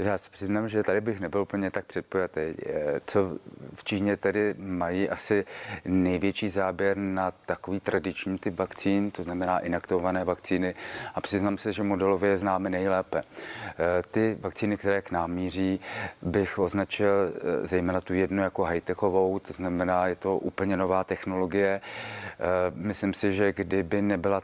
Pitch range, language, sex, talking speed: 90-100 Hz, Czech, male, 145 wpm